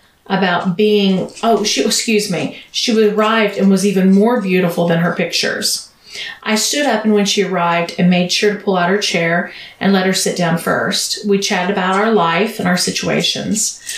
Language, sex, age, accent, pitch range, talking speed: English, female, 40-59, American, 180-215 Hz, 190 wpm